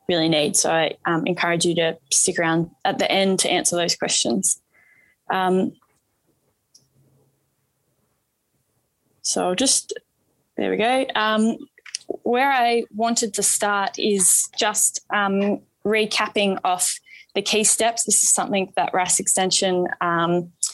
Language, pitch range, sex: English, 185-220 Hz, female